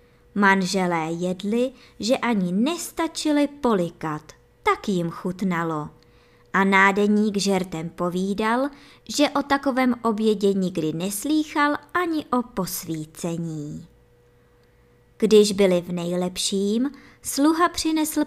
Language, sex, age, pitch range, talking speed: Czech, male, 20-39, 180-275 Hz, 90 wpm